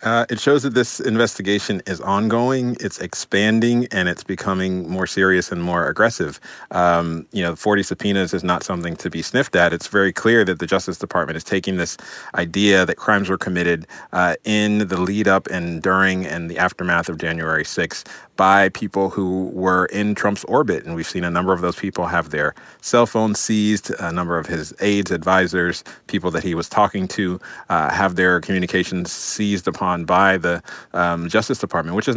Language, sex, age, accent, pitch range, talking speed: English, male, 30-49, American, 90-105 Hz, 190 wpm